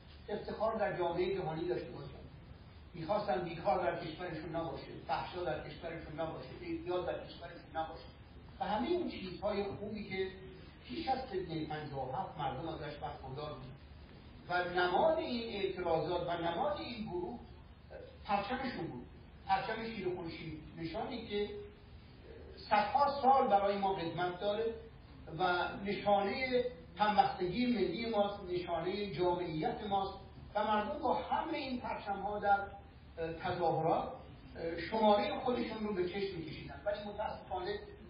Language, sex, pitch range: Persian, male, 165-210 Hz